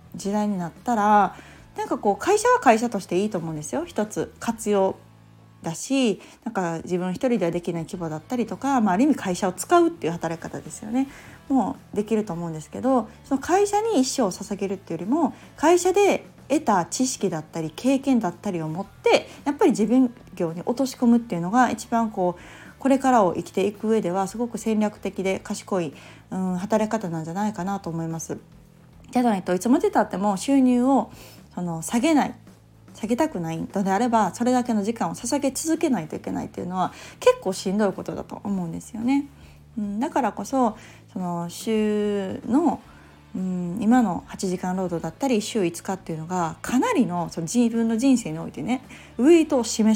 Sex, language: female, Japanese